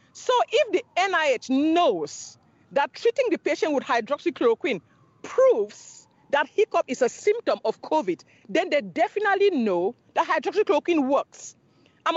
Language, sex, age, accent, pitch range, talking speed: English, female, 40-59, Nigerian, 265-365 Hz, 135 wpm